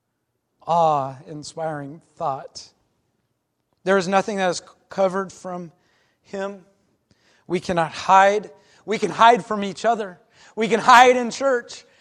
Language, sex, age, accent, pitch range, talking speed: English, male, 40-59, American, 185-260 Hz, 125 wpm